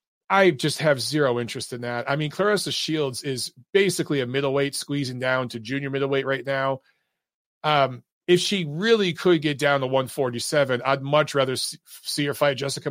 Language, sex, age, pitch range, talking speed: English, male, 40-59, 135-170 Hz, 180 wpm